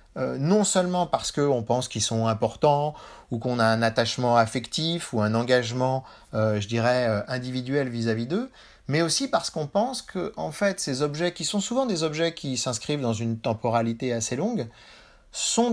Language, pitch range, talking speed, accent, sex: French, 120-170 Hz, 180 wpm, French, male